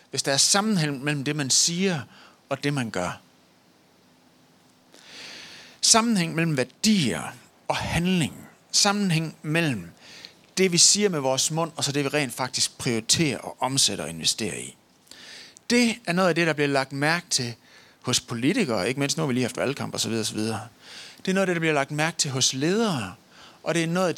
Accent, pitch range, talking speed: native, 130-180 Hz, 185 wpm